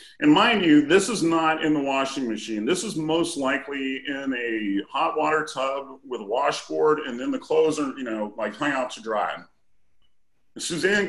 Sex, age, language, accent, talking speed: male, 40-59, English, American, 190 wpm